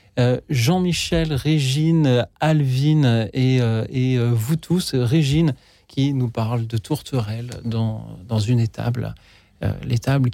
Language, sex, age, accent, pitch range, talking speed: French, male, 40-59, French, 120-160 Hz, 105 wpm